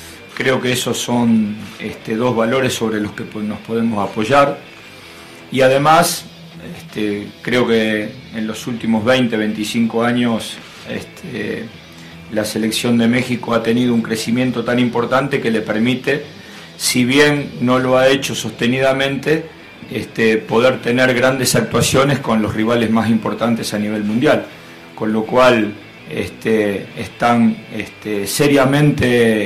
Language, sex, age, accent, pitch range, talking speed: Spanish, male, 40-59, Argentinian, 105-125 Hz, 125 wpm